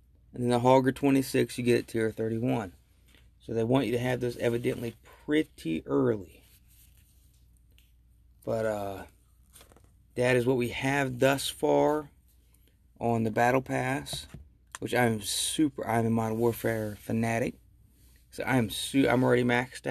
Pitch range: 95-120 Hz